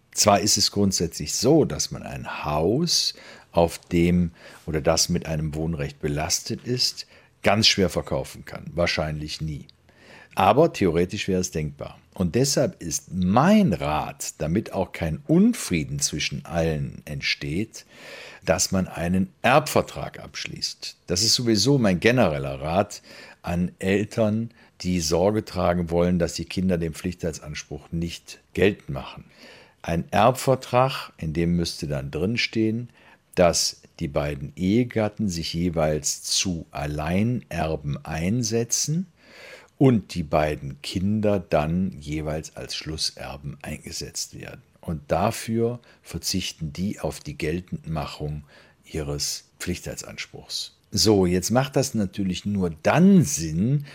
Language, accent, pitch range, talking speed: German, German, 80-110 Hz, 120 wpm